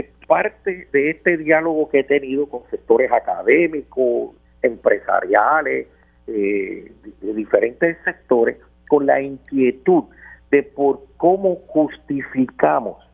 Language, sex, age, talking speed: Spanish, male, 50-69, 100 wpm